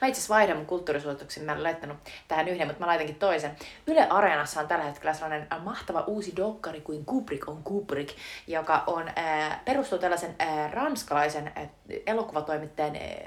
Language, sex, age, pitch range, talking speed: Finnish, female, 30-49, 150-200 Hz, 135 wpm